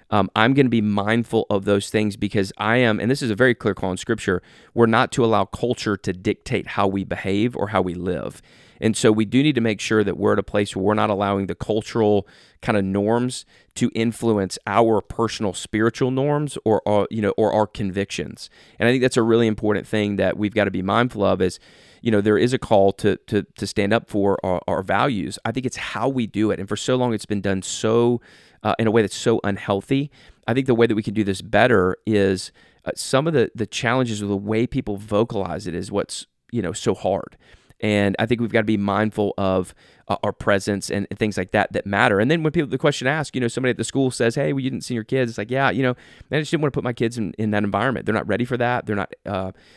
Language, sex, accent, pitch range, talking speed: English, male, American, 100-120 Hz, 260 wpm